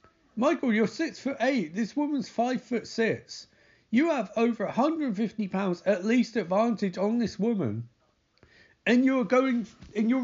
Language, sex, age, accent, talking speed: English, male, 40-59, British, 150 wpm